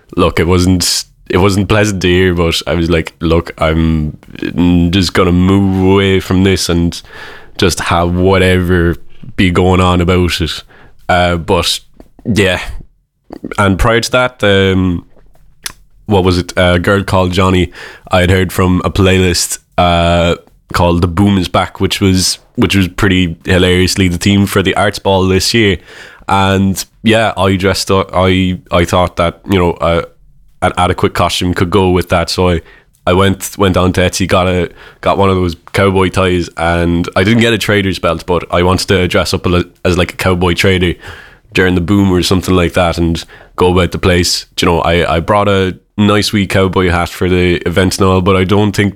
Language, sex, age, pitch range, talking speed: English, male, 20-39, 90-95 Hz, 190 wpm